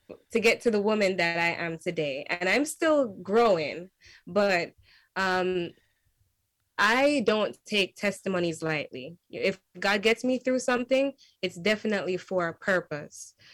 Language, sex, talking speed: English, female, 135 wpm